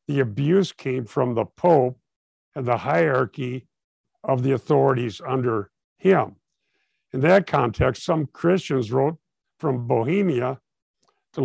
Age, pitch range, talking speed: 60-79, 125-160 Hz, 120 wpm